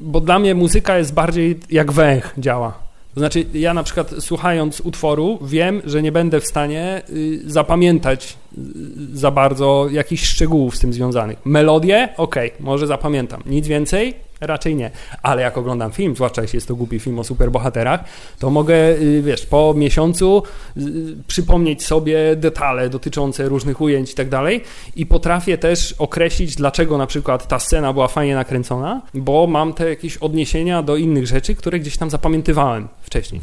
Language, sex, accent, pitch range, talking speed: Polish, male, native, 130-165 Hz, 160 wpm